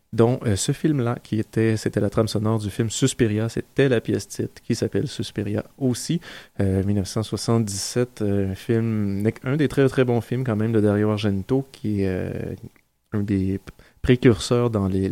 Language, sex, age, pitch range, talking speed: French, male, 30-49, 100-115 Hz, 175 wpm